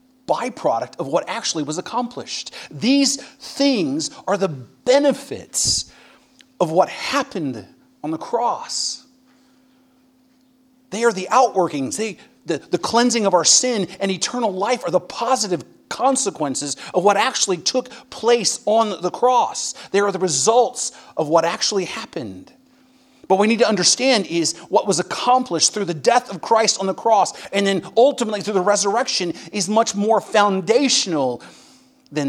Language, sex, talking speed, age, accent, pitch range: English, male, 145 wpm, 40-59, American, 170-255 Hz